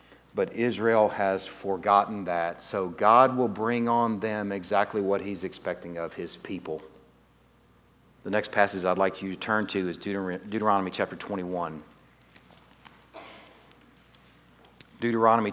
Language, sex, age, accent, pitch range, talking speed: English, male, 40-59, American, 95-120 Hz, 125 wpm